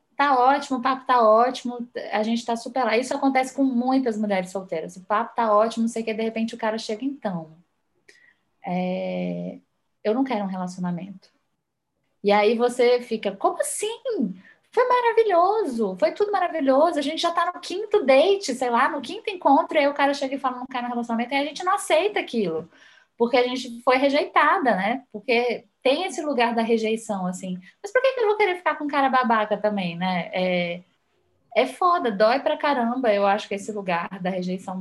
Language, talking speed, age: Portuguese, 195 wpm, 10-29